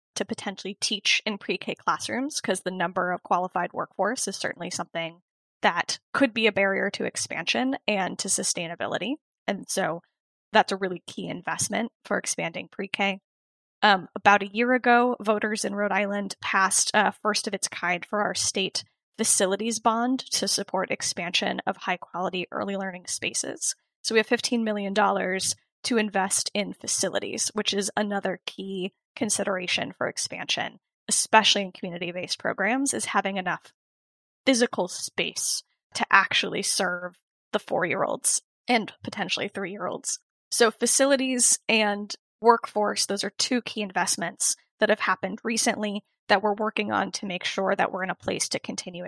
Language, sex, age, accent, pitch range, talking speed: English, female, 10-29, American, 190-230 Hz, 155 wpm